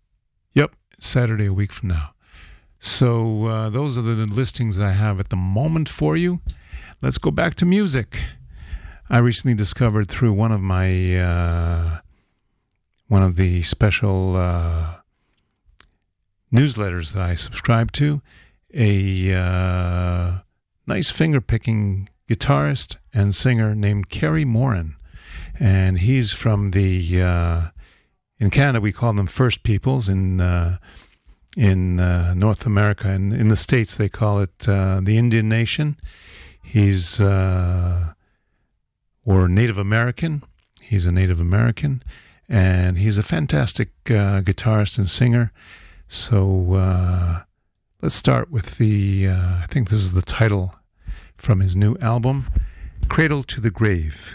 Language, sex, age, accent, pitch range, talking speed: English, male, 50-69, American, 90-115 Hz, 135 wpm